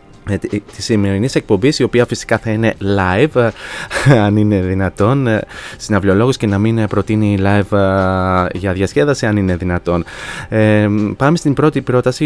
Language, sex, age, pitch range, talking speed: Greek, male, 20-39, 110-130 Hz, 135 wpm